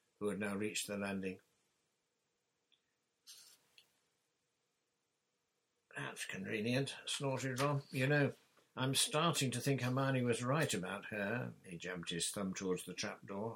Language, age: English, 60-79